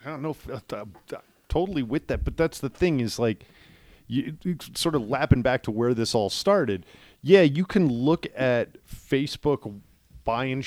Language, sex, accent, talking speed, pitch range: English, male, American, 180 wpm, 115-155 Hz